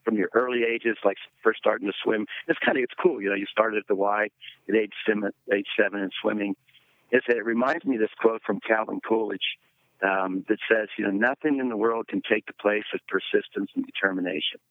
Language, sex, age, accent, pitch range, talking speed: English, male, 50-69, American, 105-125 Hz, 225 wpm